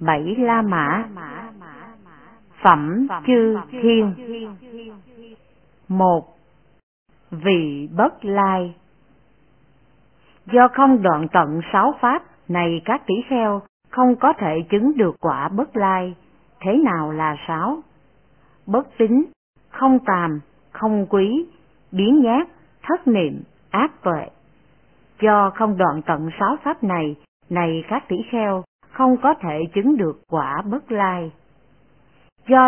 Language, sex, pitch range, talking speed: Vietnamese, female, 165-245 Hz, 120 wpm